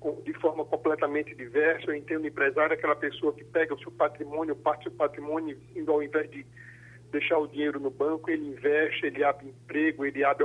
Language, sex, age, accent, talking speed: Portuguese, male, 50-69, Brazilian, 195 wpm